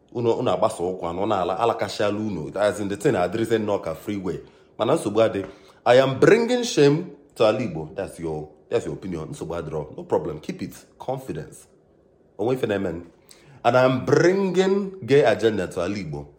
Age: 30-49